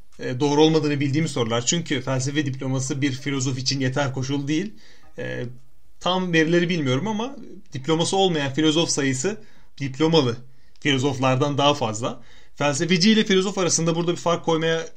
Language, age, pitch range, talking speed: Turkish, 30-49, 135-170 Hz, 135 wpm